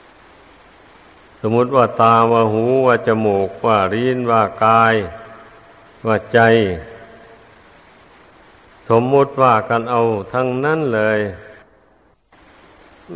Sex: male